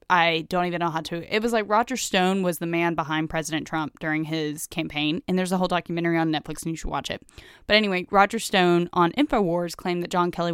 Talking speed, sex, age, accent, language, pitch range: 240 wpm, female, 10-29, American, English, 170-200 Hz